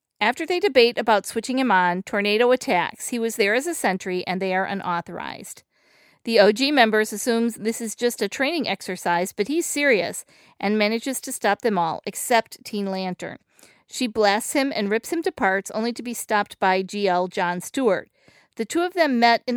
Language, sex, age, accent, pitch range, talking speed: English, female, 40-59, American, 200-265 Hz, 195 wpm